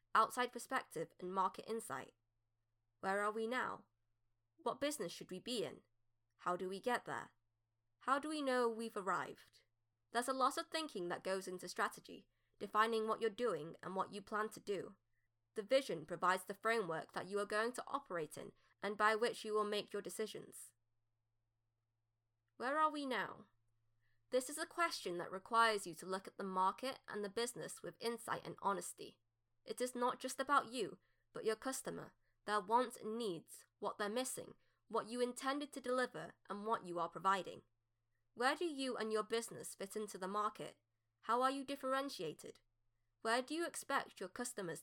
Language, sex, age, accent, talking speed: English, female, 20-39, British, 180 wpm